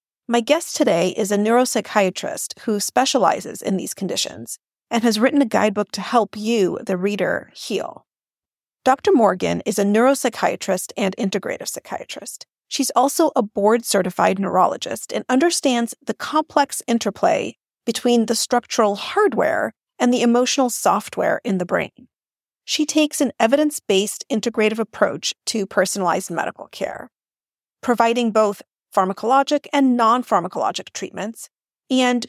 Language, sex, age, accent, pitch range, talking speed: English, female, 40-59, American, 205-270 Hz, 130 wpm